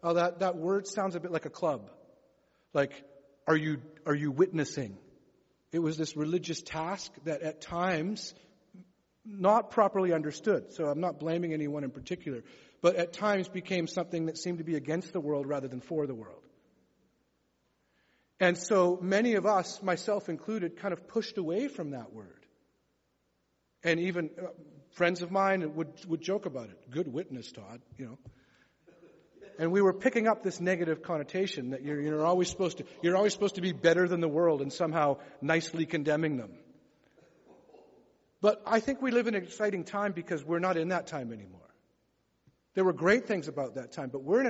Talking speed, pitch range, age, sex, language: 175 wpm, 150-190 Hz, 40-59, male, English